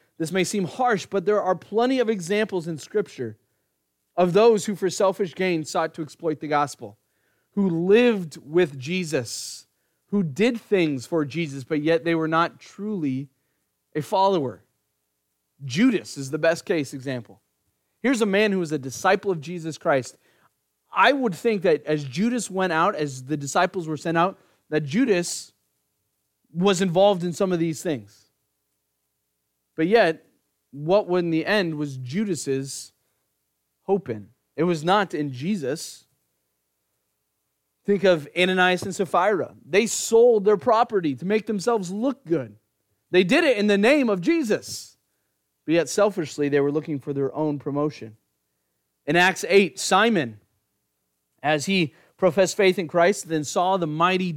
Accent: American